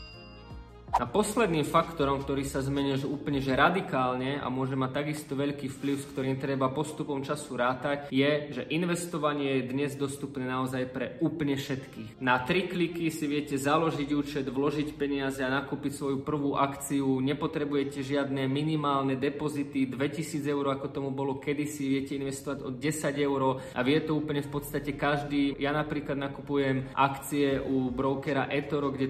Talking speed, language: 155 wpm, Slovak